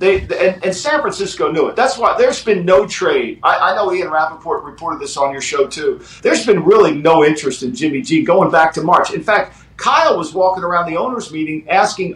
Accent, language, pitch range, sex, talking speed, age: American, English, 170-240 Hz, male, 220 wpm, 50-69